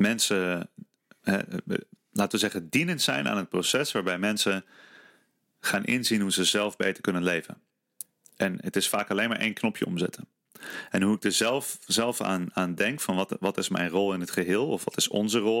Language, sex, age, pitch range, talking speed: Dutch, male, 30-49, 95-110 Hz, 195 wpm